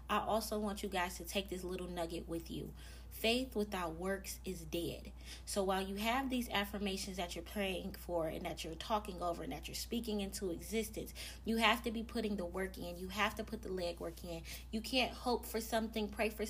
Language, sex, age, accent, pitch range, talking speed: English, female, 20-39, American, 185-225 Hz, 220 wpm